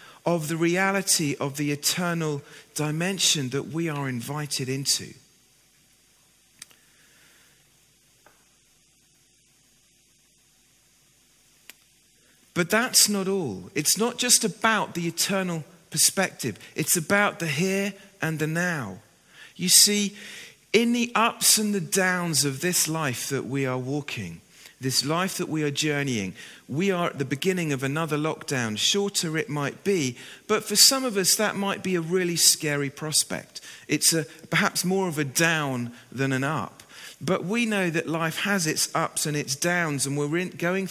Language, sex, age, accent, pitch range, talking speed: English, male, 40-59, British, 145-195 Hz, 145 wpm